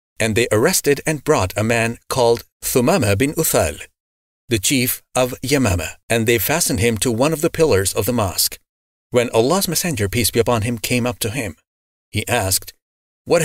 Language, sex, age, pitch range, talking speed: English, male, 40-59, 95-130 Hz, 185 wpm